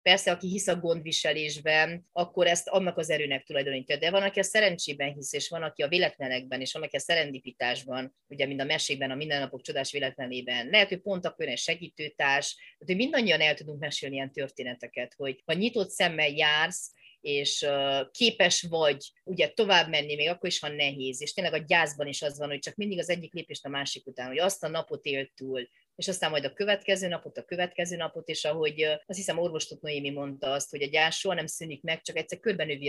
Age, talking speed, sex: 30-49, 205 wpm, female